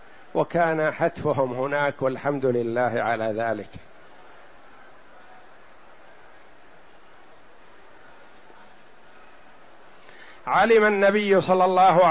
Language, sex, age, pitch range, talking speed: Arabic, male, 60-79, 150-185 Hz, 55 wpm